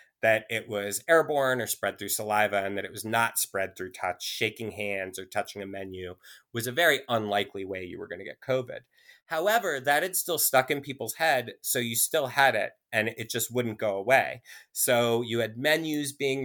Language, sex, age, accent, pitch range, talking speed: English, male, 30-49, American, 110-135 Hz, 210 wpm